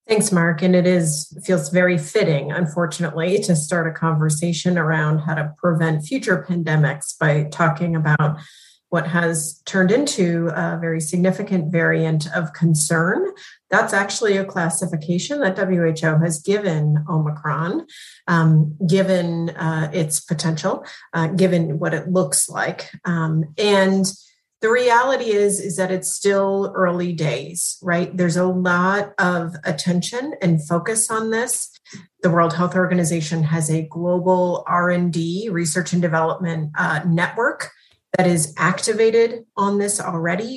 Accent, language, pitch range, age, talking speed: American, English, 165-195 Hz, 30-49, 135 wpm